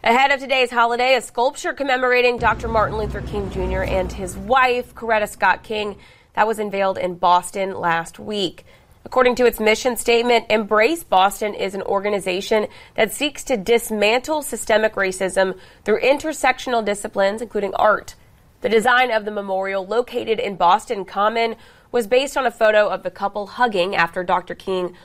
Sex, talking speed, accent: female, 160 wpm, American